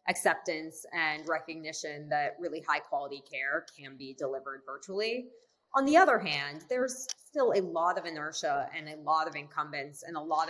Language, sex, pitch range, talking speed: English, female, 160-245 Hz, 170 wpm